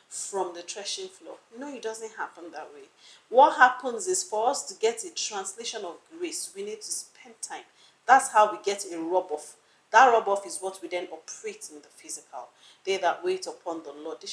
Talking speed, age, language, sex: 205 wpm, 40-59, English, female